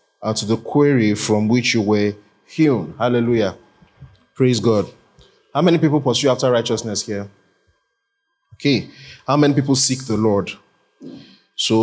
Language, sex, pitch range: English, male, 110-135 Hz